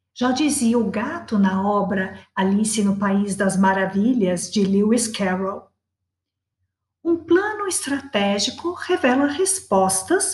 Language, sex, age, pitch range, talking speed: Portuguese, female, 50-69, 195-295 Hz, 110 wpm